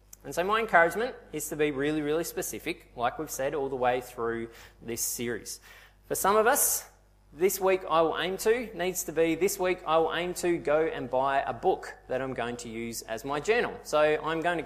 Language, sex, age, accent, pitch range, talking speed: English, male, 20-39, Australian, 130-175 Hz, 225 wpm